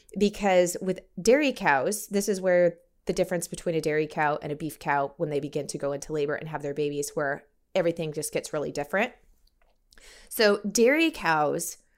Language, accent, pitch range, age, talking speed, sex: English, American, 160-200 Hz, 20-39, 185 wpm, female